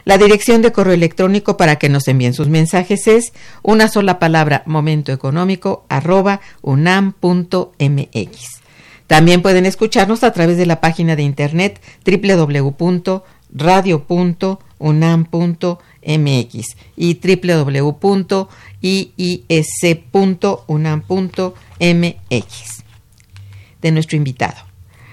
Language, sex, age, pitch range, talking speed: Spanish, female, 50-69, 145-180 Hz, 80 wpm